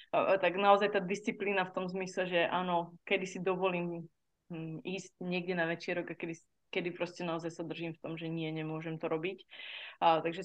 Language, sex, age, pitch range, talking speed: Slovak, female, 20-39, 170-200 Hz, 185 wpm